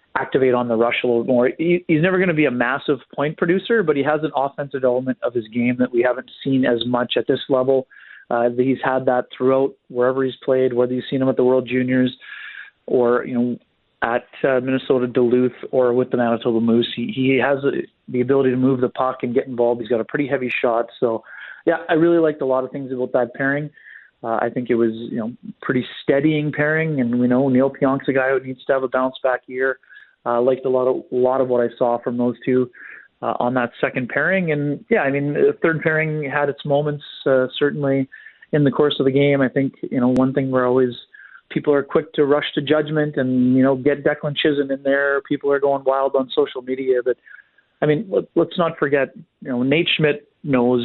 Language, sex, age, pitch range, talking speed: English, male, 30-49, 125-145 Hz, 230 wpm